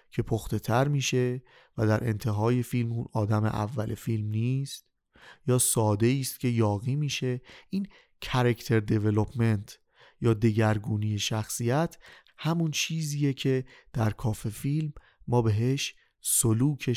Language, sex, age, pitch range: Persian, male, 30-49, 110-130 Hz